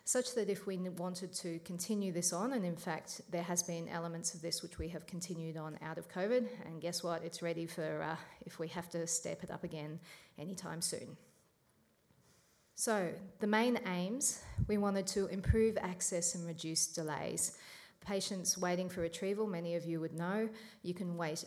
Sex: female